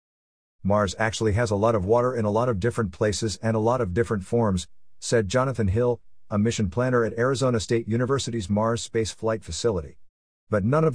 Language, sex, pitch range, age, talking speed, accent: English, male, 90-120 Hz, 50-69, 195 wpm, American